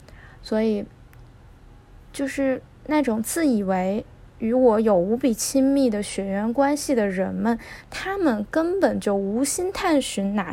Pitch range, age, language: 220-275 Hz, 10-29, Chinese